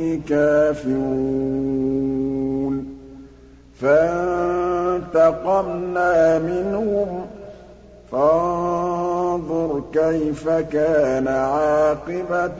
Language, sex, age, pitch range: Arabic, male, 50-69, 150-200 Hz